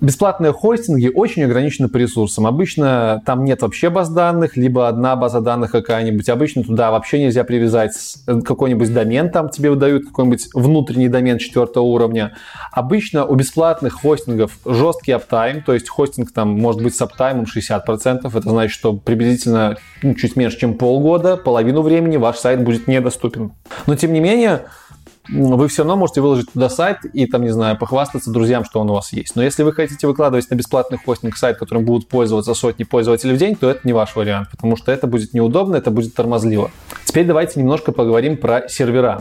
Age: 20-39